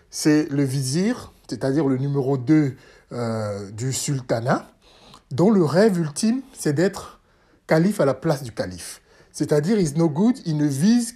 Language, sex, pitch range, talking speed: French, male, 140-185 Hz, 155 wpm